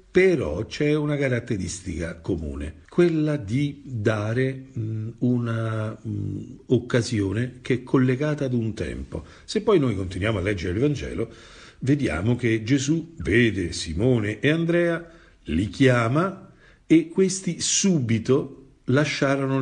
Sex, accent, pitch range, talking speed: male, native, 95-130 Hz, 120 wpm